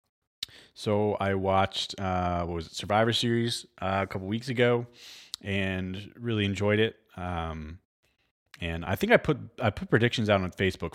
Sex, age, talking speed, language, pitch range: male, 30-49, 170 wpm, English, 85-110 Hz